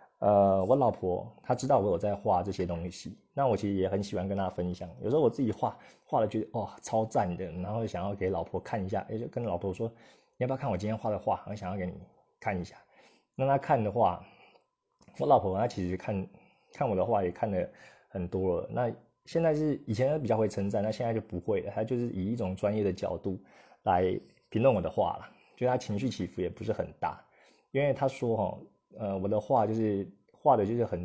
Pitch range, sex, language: 95-120 Hz, male, Chinese